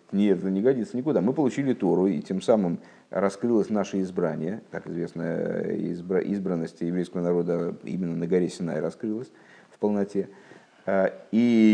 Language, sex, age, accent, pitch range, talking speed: Russian, male, 50-69, native, 95-135 Hz, 140 wpm